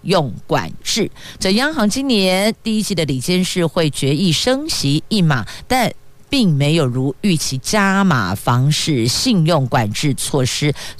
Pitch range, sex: 135-185 Hz, female